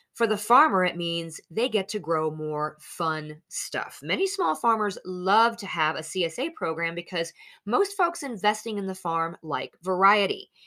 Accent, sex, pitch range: American, female, 160-230 Hz